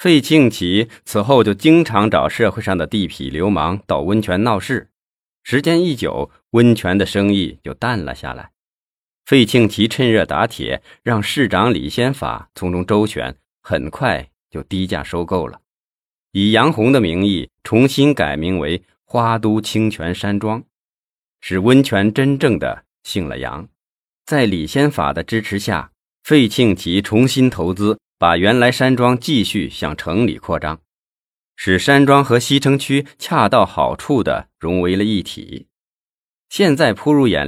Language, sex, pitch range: Chinese, male, 90-125 Hz